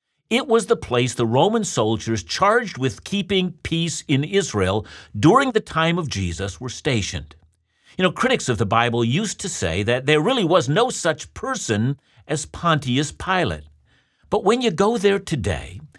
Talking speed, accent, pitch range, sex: 170 wpm, American, 110-170 Hz, male